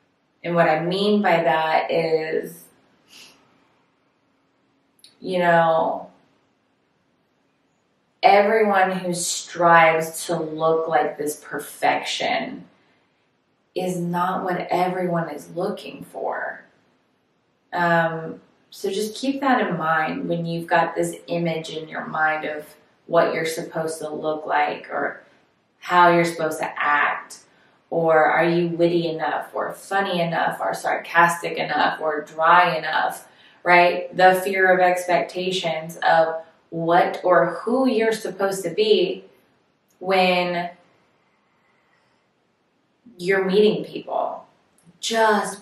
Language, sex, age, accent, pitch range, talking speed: English, female, 20-39, American, 160-190 Hz, 110 wpm